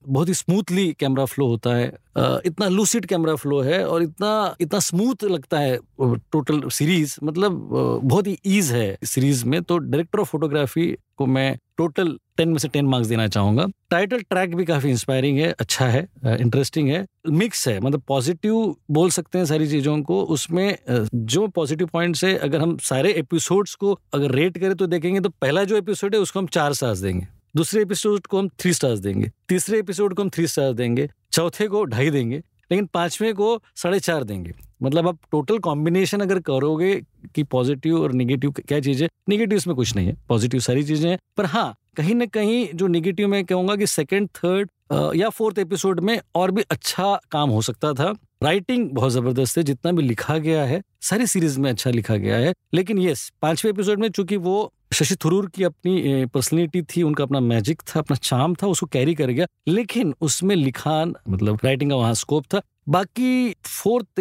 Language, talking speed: Hindi, 190 wpm